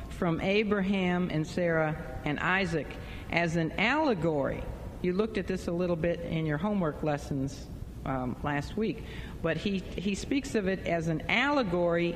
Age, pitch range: 50-69, 170-215 Hz